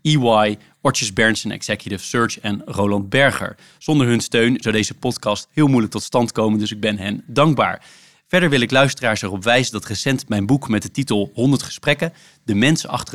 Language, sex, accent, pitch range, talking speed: Dutch, male, Dutch, 105-135 Hz, 190 wpm